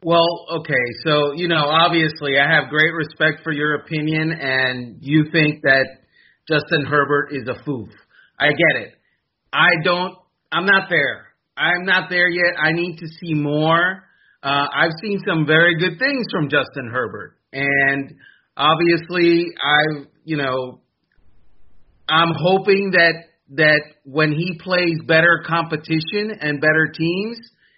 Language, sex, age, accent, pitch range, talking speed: English, male, 30-49, American, 150-175 Hz, 145 wpm